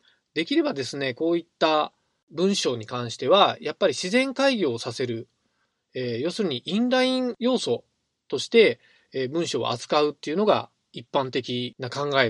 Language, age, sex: Japanese, 20-39, male